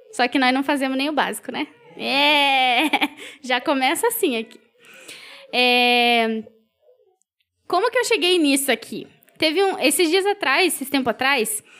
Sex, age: female, 10-29